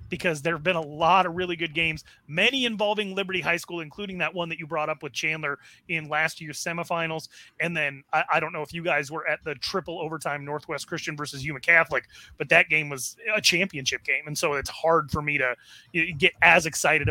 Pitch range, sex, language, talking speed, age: 150-180 Hz, male, English, 225 wpm, 30-49